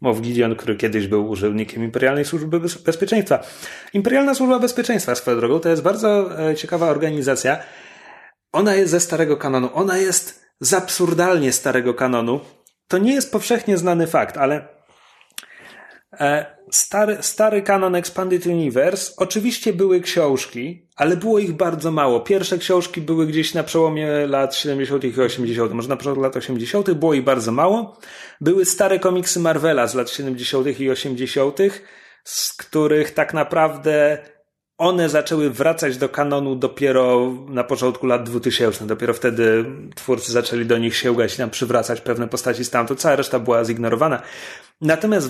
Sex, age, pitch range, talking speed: male, 30-49, 130-180 Hz, 145 wpm